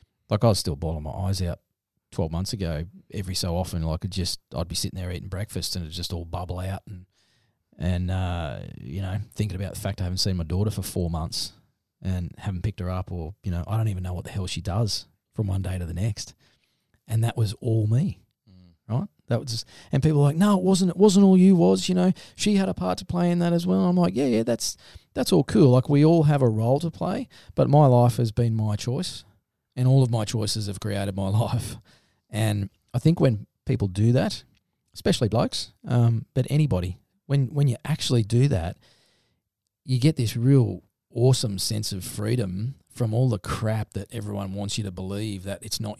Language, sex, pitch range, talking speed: English, male, 95-125 Hz, 225 wpm